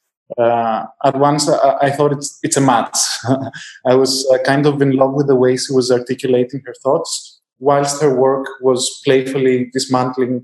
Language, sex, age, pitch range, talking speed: English, male, 20-39, 125-145 Hz, 180 wpm